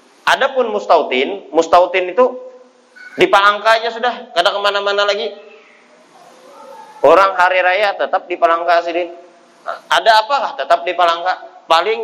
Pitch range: 165-230 Hz